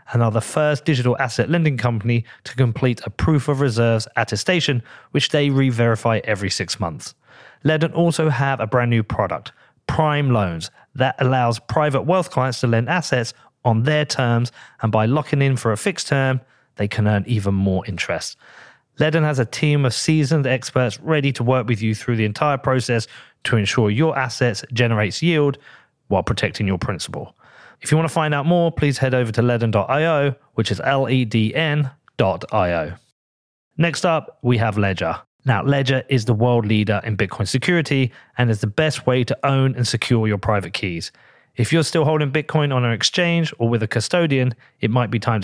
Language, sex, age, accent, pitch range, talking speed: English, male, 30-49, British, 110-145 Hz, 180 wpm